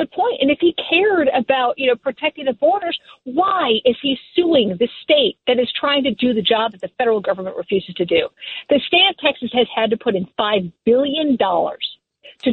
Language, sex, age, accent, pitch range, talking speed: English, female, 50-69, American, 205-280 Hz, 210 wpm